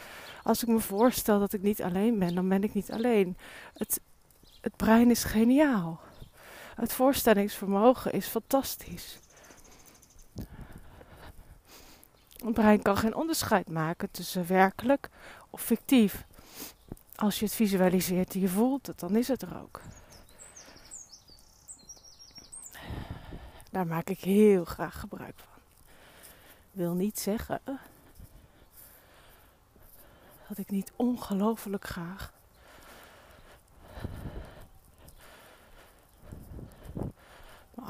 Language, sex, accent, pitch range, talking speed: Dutch, female, Dutch, 180-220 Hz, 100 wpm